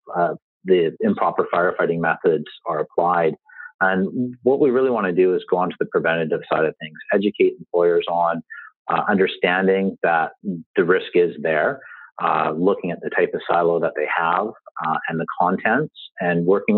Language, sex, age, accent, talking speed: English, male, 40-59, American, 175 wpm